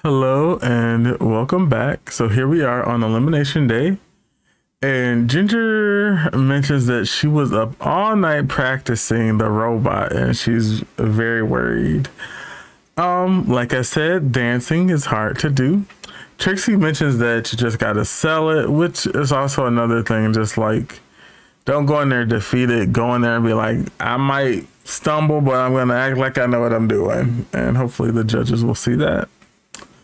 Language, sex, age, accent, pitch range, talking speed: English, male, 20-39, American, 115-155 Hz, 165 wpm